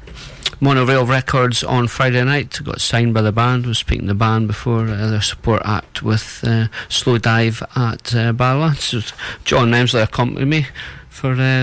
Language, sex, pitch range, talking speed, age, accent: English, male, 105-130 Hz, 170 wpm, 40-59, British